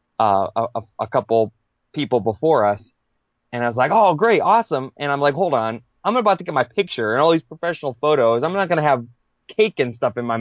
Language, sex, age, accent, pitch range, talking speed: English, male, 20-39, American, 115-160 Hz, 230 wpm